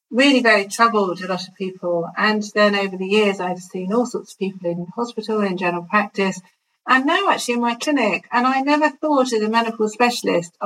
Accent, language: British, English